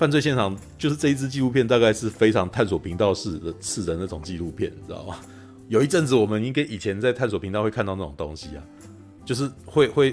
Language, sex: Chinese, male